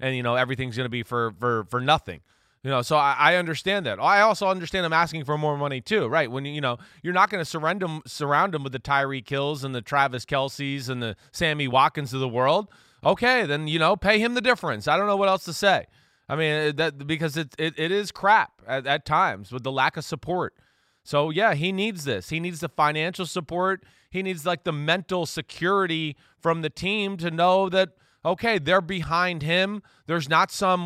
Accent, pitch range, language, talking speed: American, 135-170 Hz, English, 220 wpm